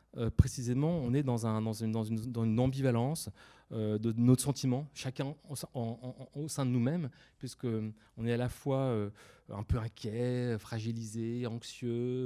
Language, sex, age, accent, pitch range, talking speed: French, male, 30-49, French, 110-135 Hz, 175 wpm